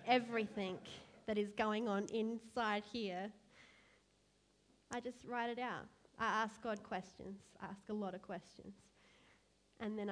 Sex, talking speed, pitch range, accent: female, 140 wpm, 190-210 Hz, Australian